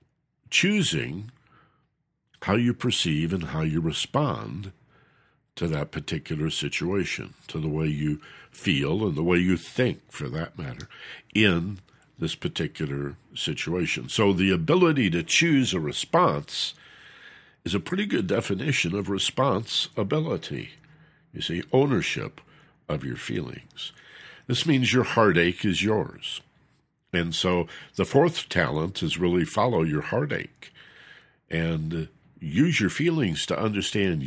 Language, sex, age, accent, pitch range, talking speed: English, male, 60-79, American, 80-135 Hz, 125 wpm